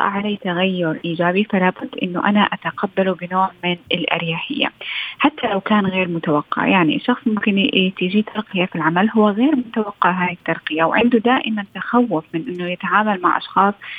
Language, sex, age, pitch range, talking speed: Arabic, female, 20-39, 180-215 Hz, 155 wpm